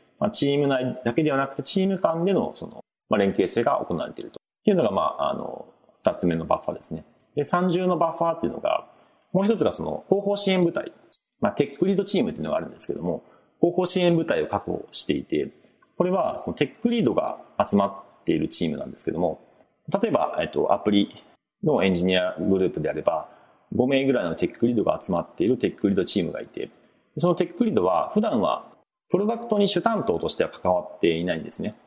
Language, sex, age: Japanese, male, 40-59